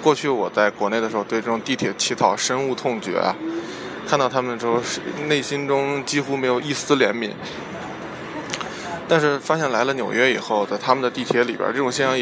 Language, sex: Chinese, male